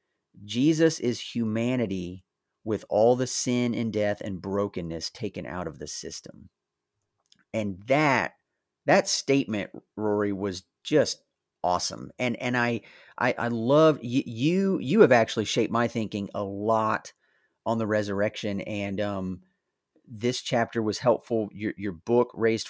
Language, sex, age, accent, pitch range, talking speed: English, male, 30-49, American, 100-120 Hz, 135 wpm